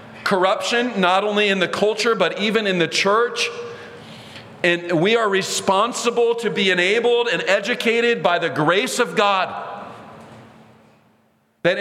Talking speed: 130 wpm